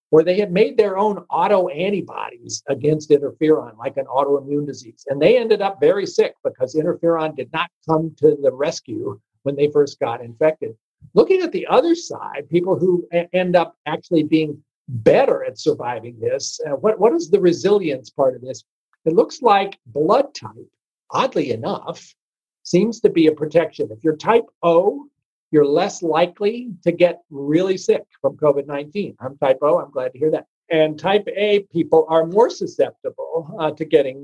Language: English